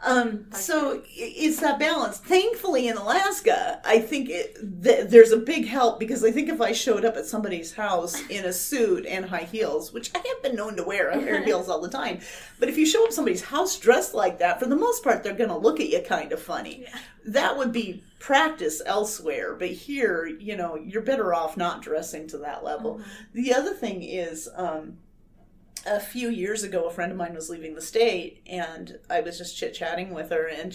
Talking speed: 210 wpm